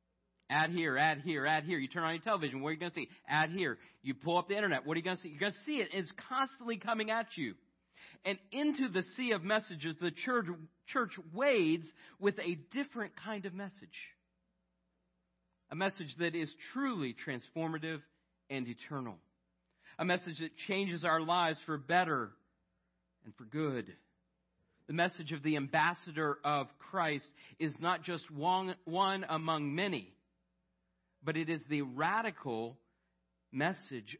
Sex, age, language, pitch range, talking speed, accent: male, 40-59, English, 135-185 Hz, 165 wpm, American